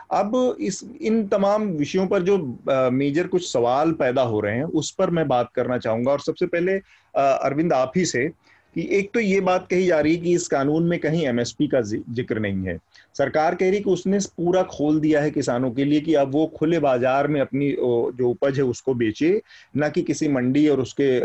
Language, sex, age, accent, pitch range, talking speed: Hindi, male, 40-59, native, 125-175 Hz, 215 wpm